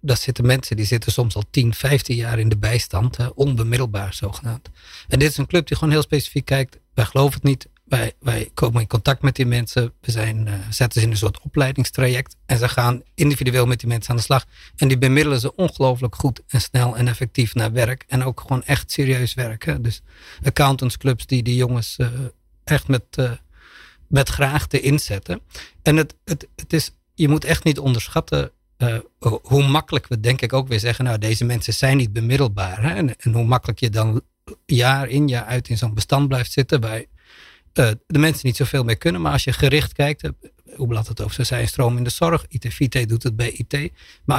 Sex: male